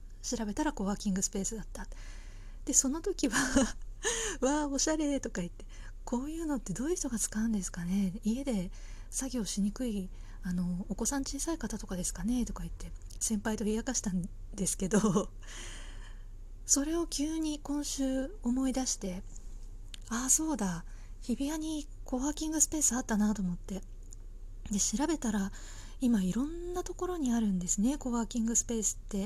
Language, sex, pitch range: Japanese, female, 190-265 Hz